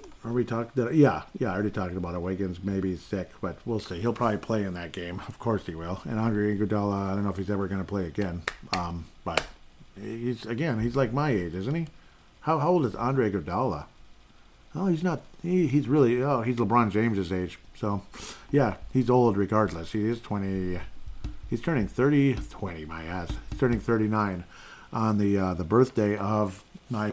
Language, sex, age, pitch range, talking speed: English, male, 50-69, 100-125 Hz, 200 wpm